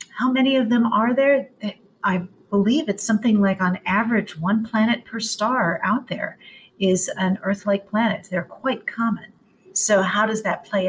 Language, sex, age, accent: English, female, 50-69, American